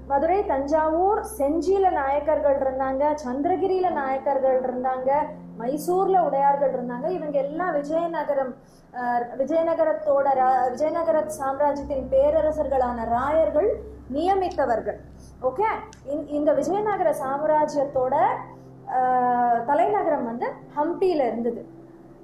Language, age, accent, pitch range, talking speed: Tamil, 20-39, native, 255-330 Hz, 80 wpm